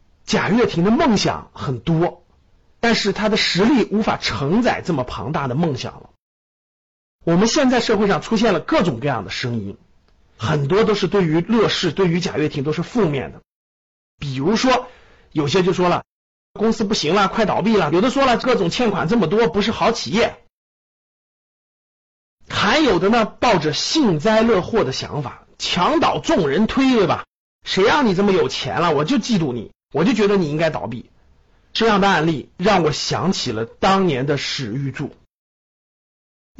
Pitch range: 155-225 Hz